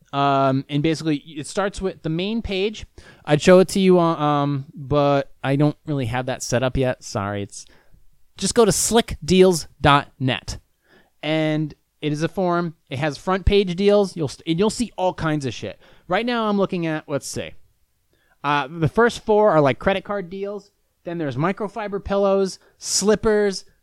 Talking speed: 175 wpm